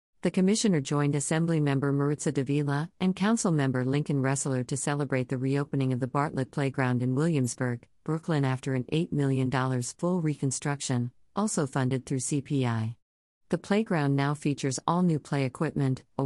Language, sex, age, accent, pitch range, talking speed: English, female, 50-69, American, 130-155 Hz, 150 wpm